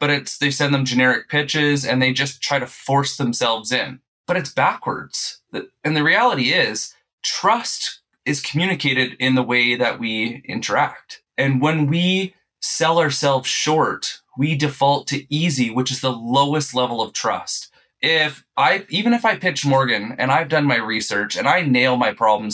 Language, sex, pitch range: English, male, 115-140 Hz